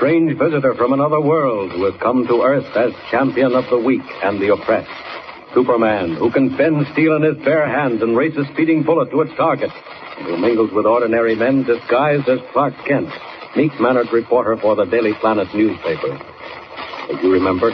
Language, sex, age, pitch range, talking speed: English, male, 60-79, 115-145 Hz, 185 wpm